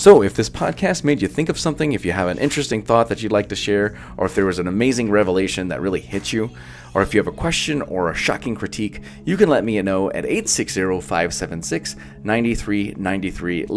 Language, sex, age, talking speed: English, male, 30-49, 210 wpm